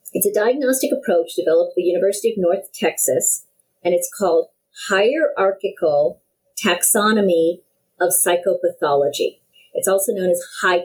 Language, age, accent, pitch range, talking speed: English, 40-59, American, 175-275 Hz, 125 wpm